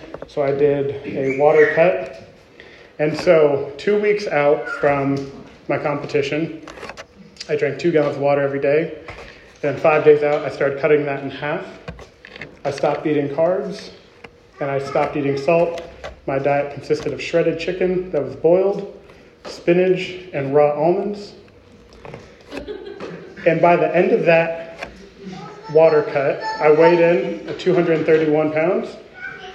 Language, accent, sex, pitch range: English, American, male, 145-180 Hz